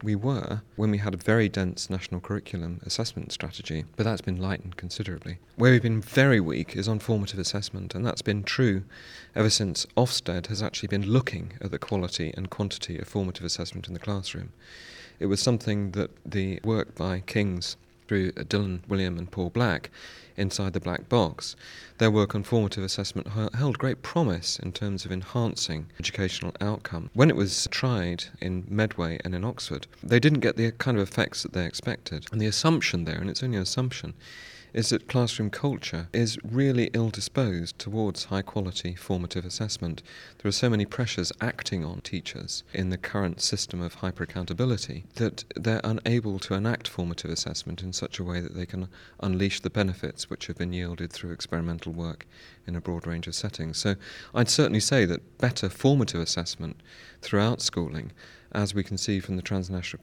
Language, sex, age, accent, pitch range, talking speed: English, male, 30-49, British, 90-110 Hz, 180 wpm